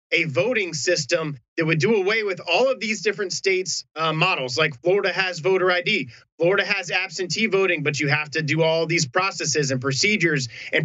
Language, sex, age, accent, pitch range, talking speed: English, male, 30-49, American, 160-205 Hz, 195 wpm